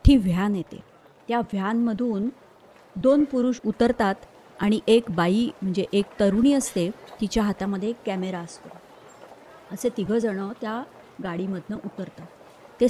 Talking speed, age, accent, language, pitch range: 120 wpm, 30-49, native, Marathi, 190-230 Hz